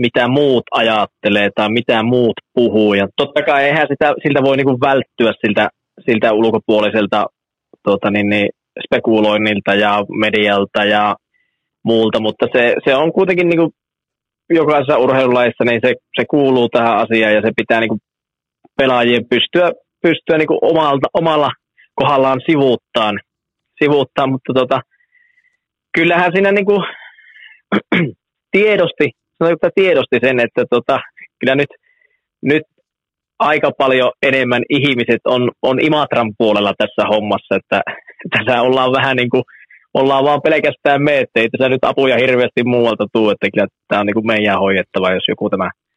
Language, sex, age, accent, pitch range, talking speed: Finnish, male, 20-39, native, 110-155 Hz, 135 wpm